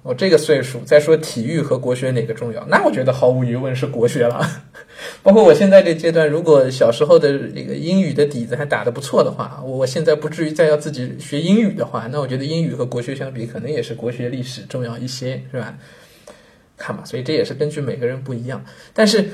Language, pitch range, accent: Chinese, 125-160 Hz, native